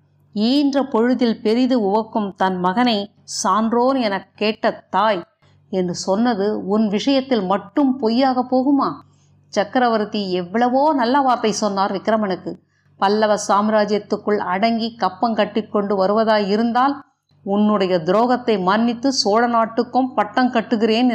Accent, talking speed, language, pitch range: native, 100 wpm, Tamil, 200-250 Hz